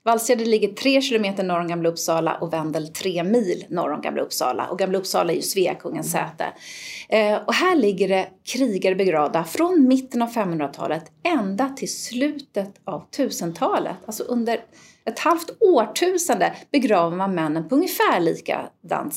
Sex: female